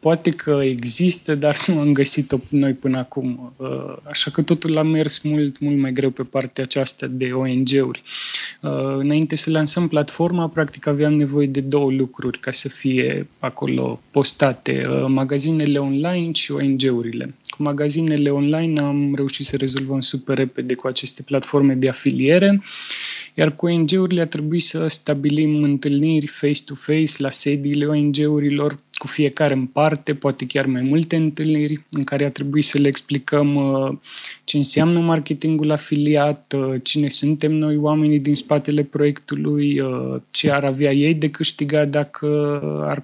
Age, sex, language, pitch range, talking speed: 20-39, male, Romanian, 135-150 Hz, 145 wpm